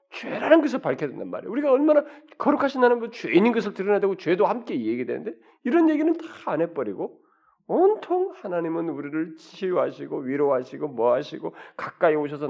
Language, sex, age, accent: Korean, male, 40-59, native